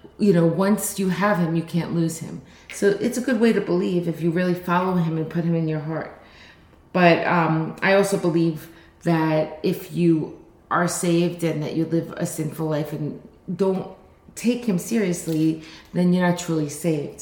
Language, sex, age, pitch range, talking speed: English, female, 30-49, 165-195 Hz, 190 wpm